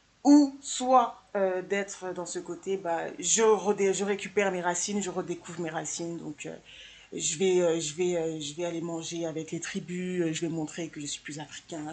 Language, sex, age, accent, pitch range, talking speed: French, female, 20-39, French, 165-195 Hz, 210 wpm